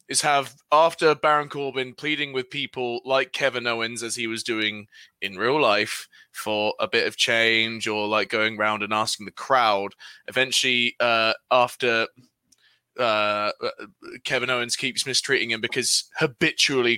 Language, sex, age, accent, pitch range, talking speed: English, male, 20-39, British, 115-150 Hz, 150 wpm